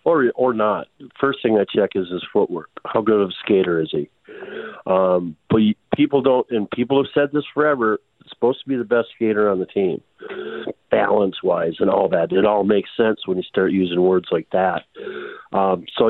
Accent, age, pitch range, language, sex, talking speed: American, 50-69, 95-130 Hz, English, male, 205 wpm